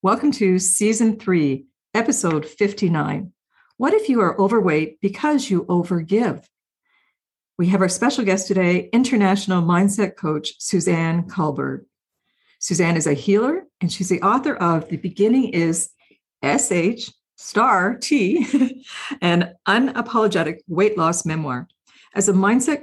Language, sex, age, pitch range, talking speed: English, female, 50-69, 170-220 Hz, 125 wpm